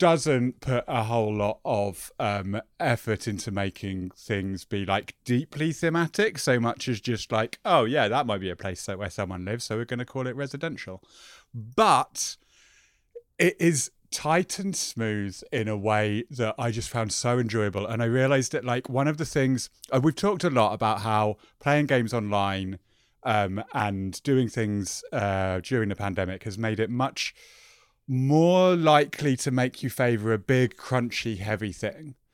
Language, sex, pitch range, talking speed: English, male, 105-140 Hz, 175 wpm